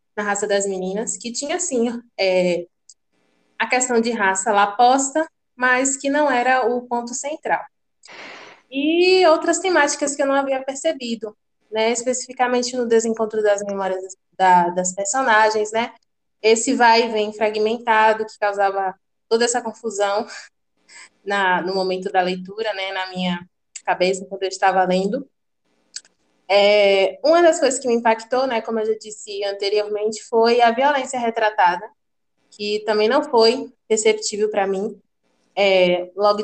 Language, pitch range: Portuguese, 195-245 Hz